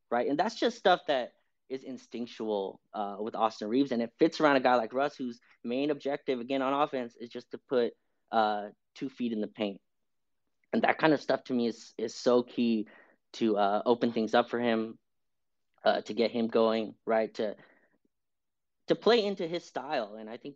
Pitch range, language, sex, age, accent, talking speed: 110-130 Hz, English, male, 20-39, American, 200 wpm